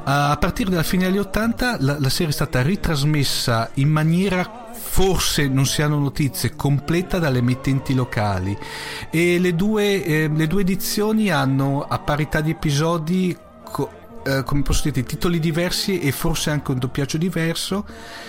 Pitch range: 125-160 Hz